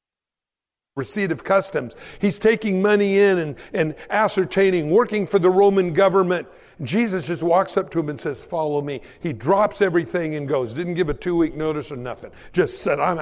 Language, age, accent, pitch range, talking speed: English, 60-79, American, 160-215 Hz, 185 wpm